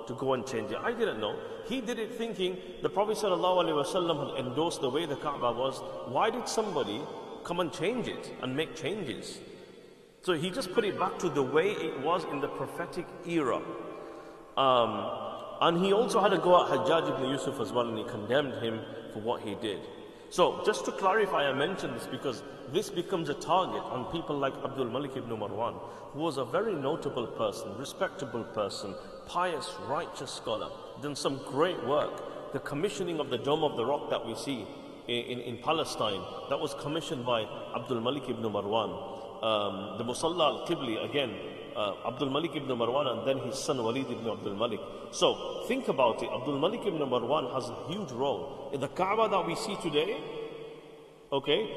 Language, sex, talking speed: English, male, 190 wpm